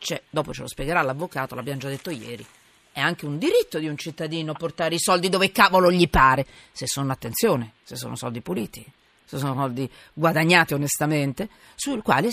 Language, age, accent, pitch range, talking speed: Italian, 40-59, native, 140-210 Hz, 185 wpm